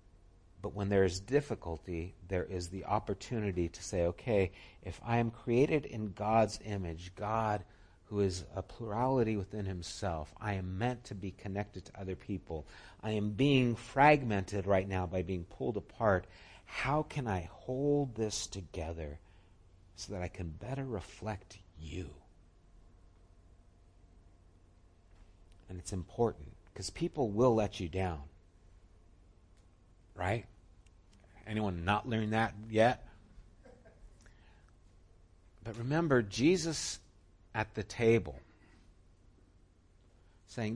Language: English